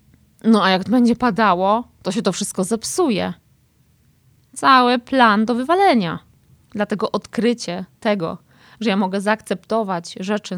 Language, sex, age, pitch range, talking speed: Polish, female, 20-39, 185-235 Hz, 125 wpm